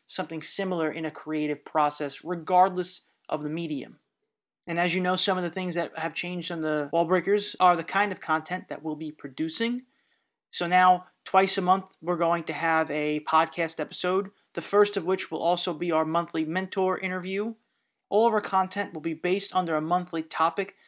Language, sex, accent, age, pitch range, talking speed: English, male, American, 30-49, 160-190 Hz, 195 wpm